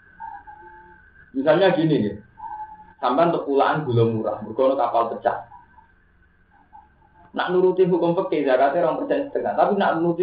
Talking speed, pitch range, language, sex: 130 wpm, 115-180 Hz, Indonesian, male